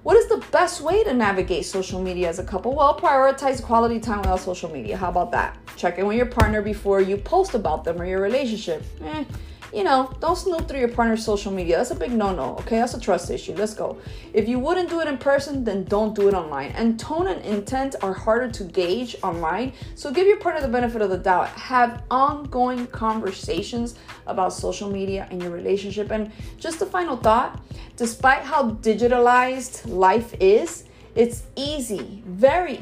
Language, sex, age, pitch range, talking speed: English, female, 30-49, 195-265 Hz, 195 wpm